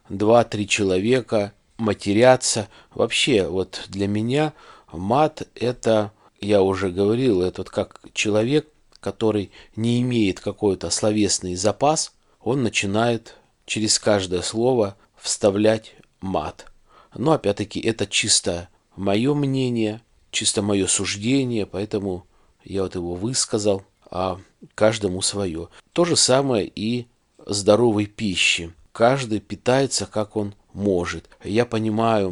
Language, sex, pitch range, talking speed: Russian, male, 100-120 Hz, 110 wpm